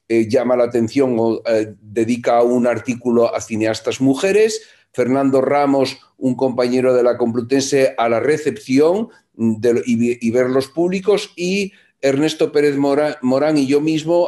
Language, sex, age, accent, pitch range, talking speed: Spanish, male, 50-69, Spanish, 120-160 Hz, 145 wpm